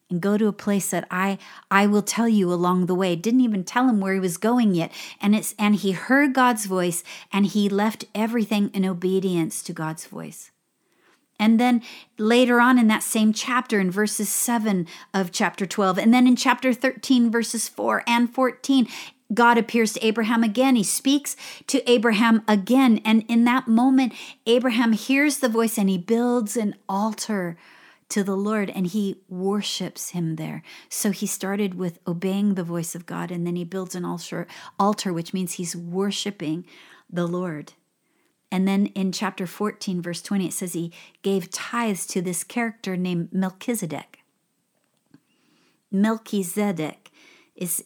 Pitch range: 180-230 Hz